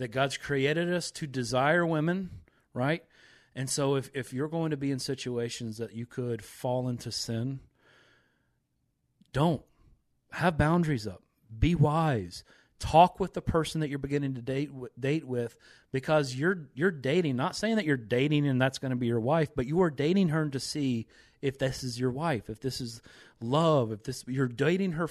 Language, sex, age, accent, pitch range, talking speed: English, male, 40-59, American, 115-145 Hz, 190 wpm